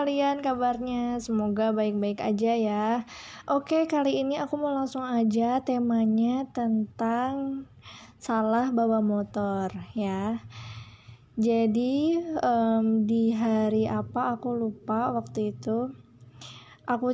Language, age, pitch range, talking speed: Indonesian, 20-39, 215-250 Hz, 100 wpm